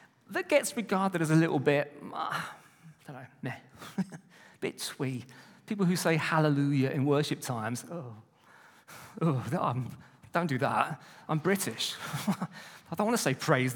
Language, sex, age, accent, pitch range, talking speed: English, male, 40-59, British, 145-210 Hz, 155 wpm